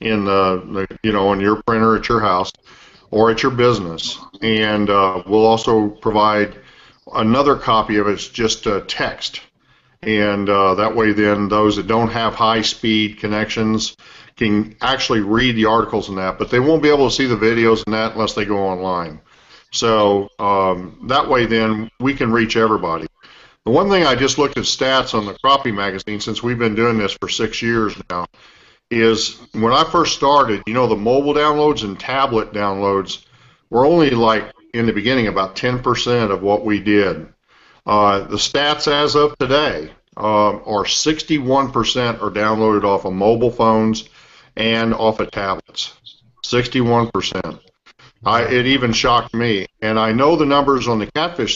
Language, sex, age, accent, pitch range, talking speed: English, male, 50-69, American, 105-120 Hz, 170 wpm